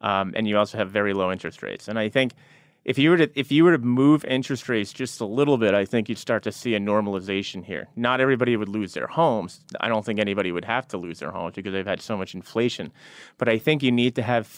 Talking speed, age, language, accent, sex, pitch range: 255 wpm, 30-49, English, American, male, 100-120 Hz